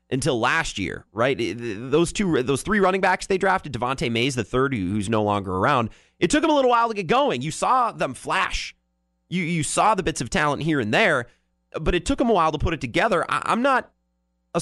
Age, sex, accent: 30-49, male, American